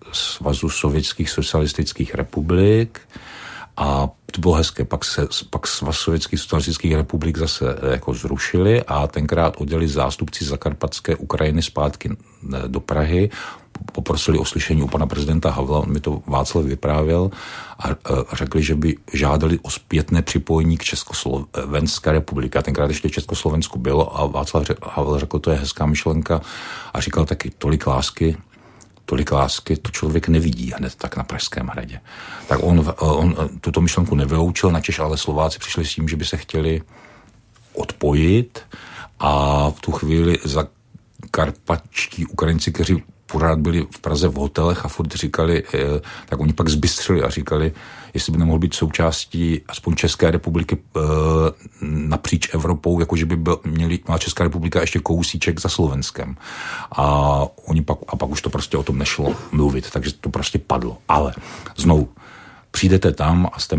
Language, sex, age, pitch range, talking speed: Czech, male, 50-69, 75-85 Hz, 145 wpm